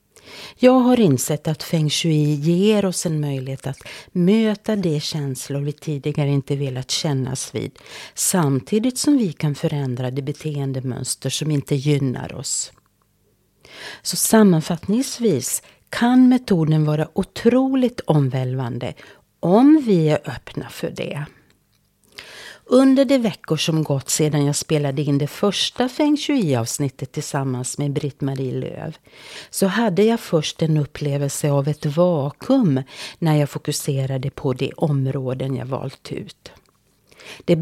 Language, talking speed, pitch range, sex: Swedish, 130 wpm, 135-180 Hz, female